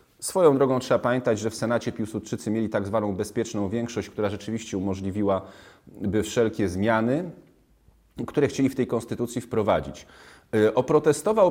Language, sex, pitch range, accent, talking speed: Polish, male, 105-135 Hz, native, 130 wpm